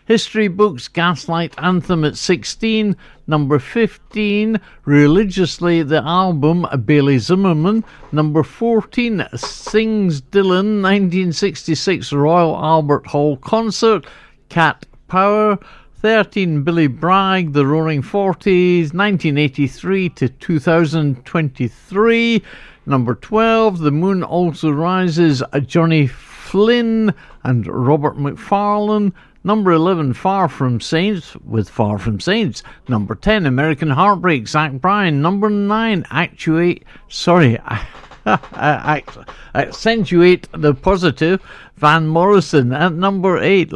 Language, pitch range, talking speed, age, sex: English, 145-195 Hz, 95 wpm, 60-79, male